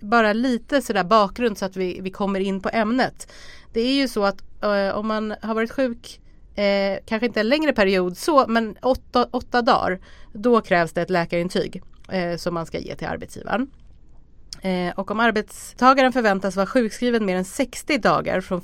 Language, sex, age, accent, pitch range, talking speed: Swedish, female, 30-49, native, 175-230 Hz, 175 wpm